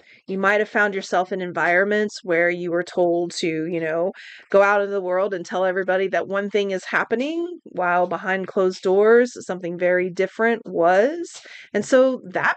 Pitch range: 190-230 Hz